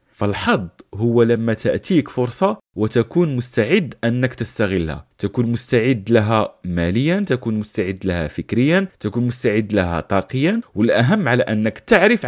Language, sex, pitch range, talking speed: Arabic, male, 105-160 Hz, 120 wpm